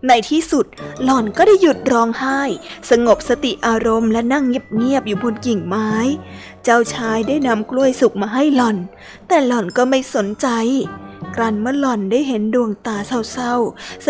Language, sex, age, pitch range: Thai, female, 20-39, 225-270 Hz